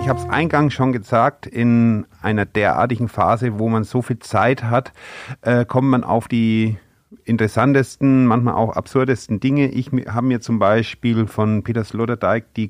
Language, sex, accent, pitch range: German, male, German, 115-135 Hz